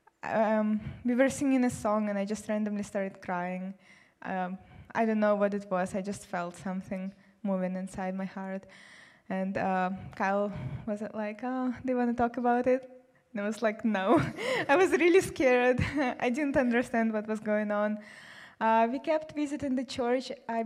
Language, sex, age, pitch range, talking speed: English, female, 20-39, 205-235 Hz, 185 wpm